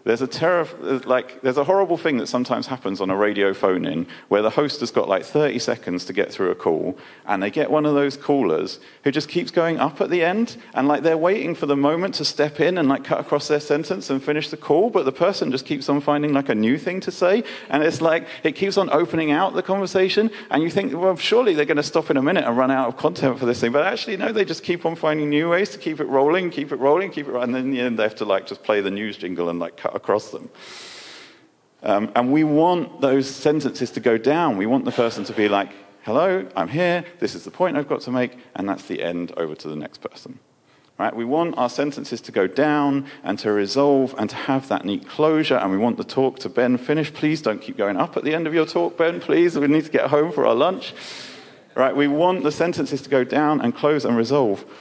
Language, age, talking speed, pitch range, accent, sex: English, 40-59, 260 wpm, 125-165 Hz, British, male